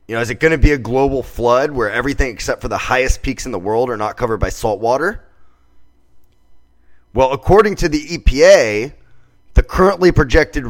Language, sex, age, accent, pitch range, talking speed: English, male, 30-49, American, 100-145 Hz, 190 wpm